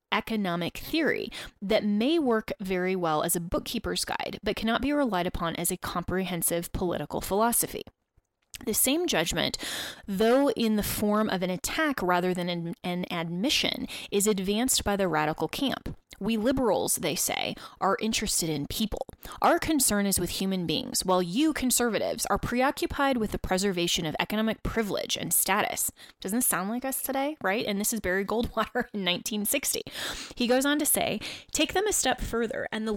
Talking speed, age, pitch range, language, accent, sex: 170 wpm, 20-39, 185-250 Hz, English, American, female